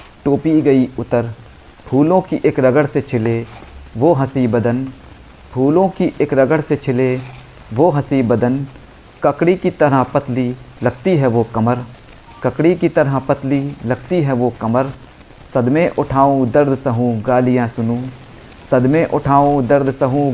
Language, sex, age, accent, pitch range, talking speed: Hindi, male, 50-69, native, 120-150 Hz, 140 wpm